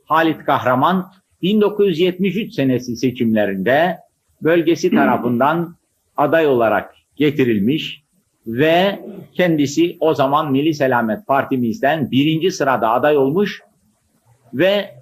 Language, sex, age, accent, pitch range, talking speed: Turkish, male, 50-69, native, 125-180 Hz, 90 wpm